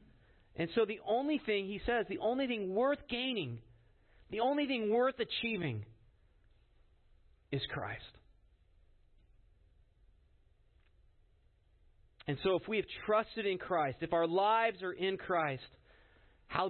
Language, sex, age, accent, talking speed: English, male, 40-59, American, 120 wpm